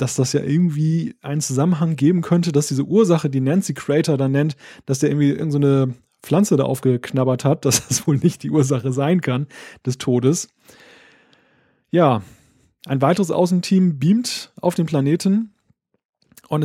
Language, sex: German, male